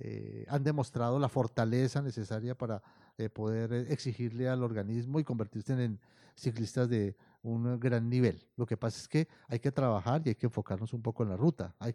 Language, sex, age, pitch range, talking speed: Spanish, male, 40-59, 115-145 Hz, 190 wpm